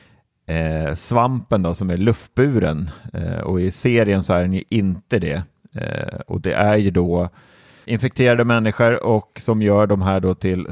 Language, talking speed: Swedish, 155 wpm